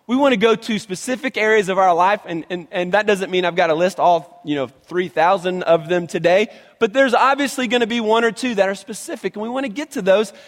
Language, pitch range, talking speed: English, 180-230 Hz, 265 wpm